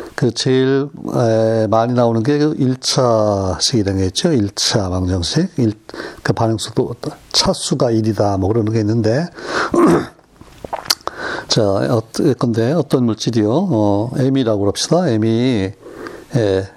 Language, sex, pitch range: Korean, male, 105-135 Hz